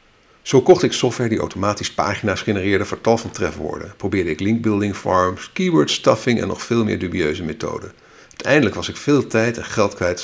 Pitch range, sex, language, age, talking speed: 90-115 Hz, male, Dutch, 50-69, 190 wpm